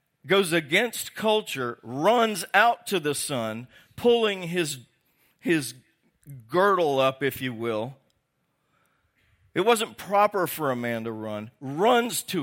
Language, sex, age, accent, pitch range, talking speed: English, male, 50-69, American, 135-200 Hz, 125 wpm